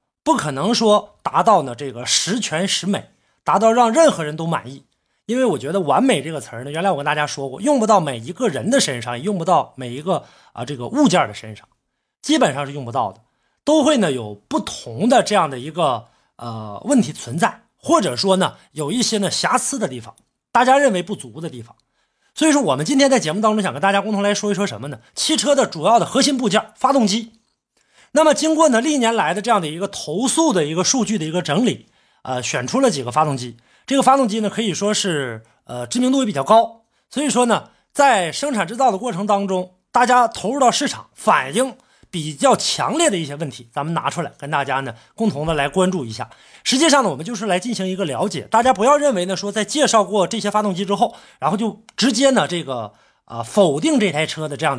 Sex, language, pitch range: male, Chinese, 150-250 Hz